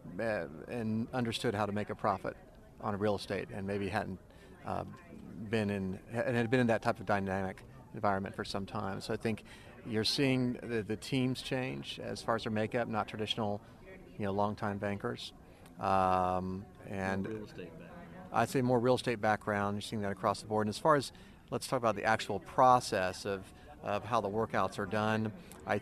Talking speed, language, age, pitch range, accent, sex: 180 wpm, English, 40-59, 100-115 Hz, American, male